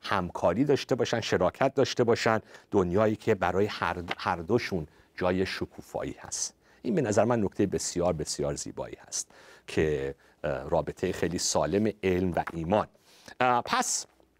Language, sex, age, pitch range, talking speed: Persian, male, 50-69, 95-150 Hz, 140 wpm